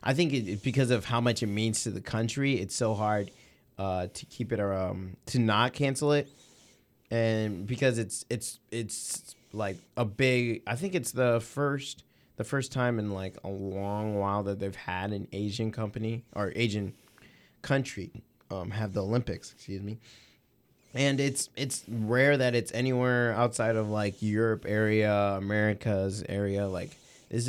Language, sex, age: English, male, 20-39